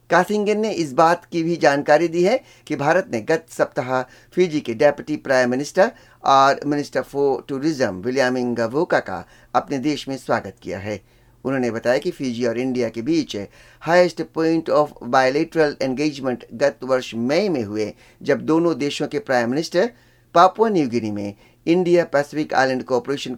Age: 60-79